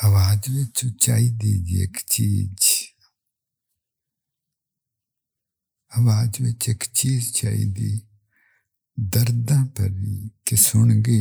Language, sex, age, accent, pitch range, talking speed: English, male, 50-69, Indian, 110-150 Hz, 55 wpm